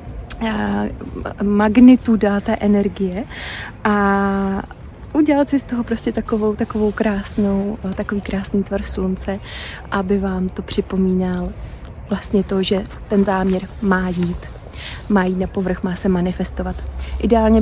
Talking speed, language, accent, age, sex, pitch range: 125 wpm, Czech, native, 30-49, female, 195-230 Hz